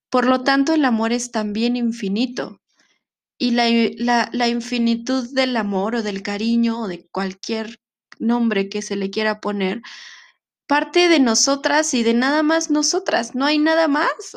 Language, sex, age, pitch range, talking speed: Spanish, female, 20-39, 200-265 Hz, 160 wpm